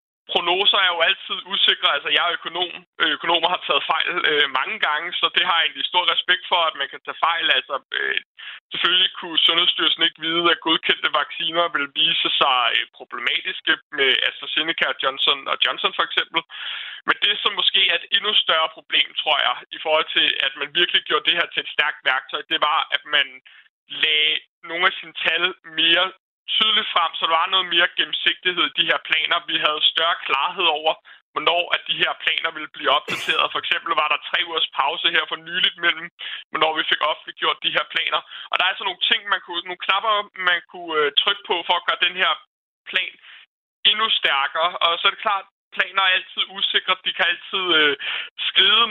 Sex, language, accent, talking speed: male, Danish, native, 205 wpm